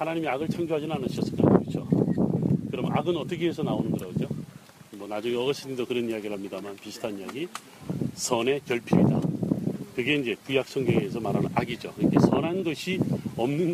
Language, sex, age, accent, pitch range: Korean, male, 40-59, native, 140-185 Hz